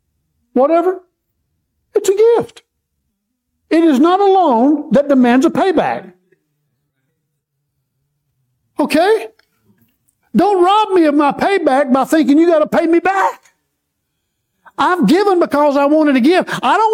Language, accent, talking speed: English, American, 130 wpm